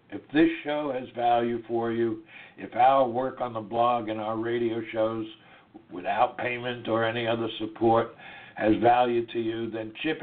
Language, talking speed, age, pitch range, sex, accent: English, 170 wpm, 60-79, 110-125 Hz, male, American